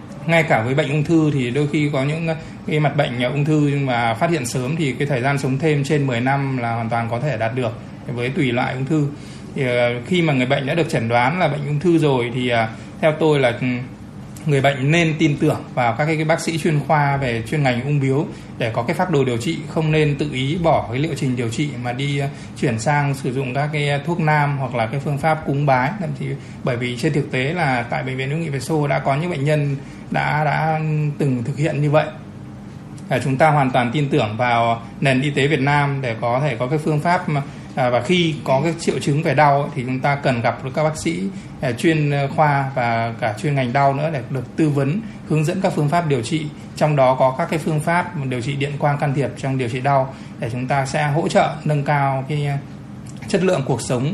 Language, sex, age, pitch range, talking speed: Vietnamese, male, 20-39, 130-155 Hz, 250 wpm